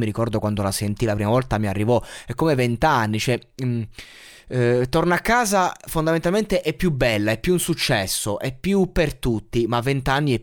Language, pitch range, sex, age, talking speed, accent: Italian, 105-145 Hz, male, 20-39, 190 wpm, native